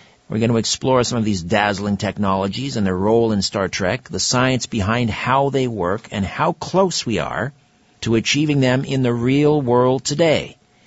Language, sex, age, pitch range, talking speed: English, male, 50-69, 105-130 Hz, 190 wpm